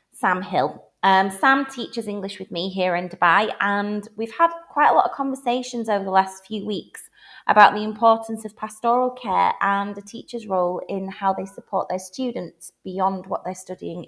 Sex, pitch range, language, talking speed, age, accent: female, 170-225 Hz, English, 190 wpm, 30-49, British